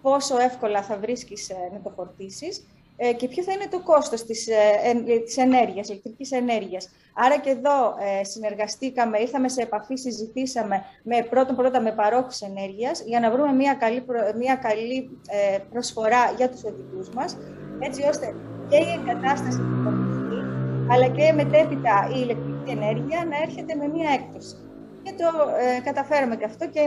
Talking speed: 165 wpm